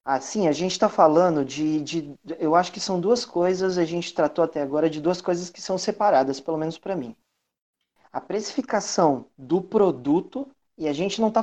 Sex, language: male, Portuguese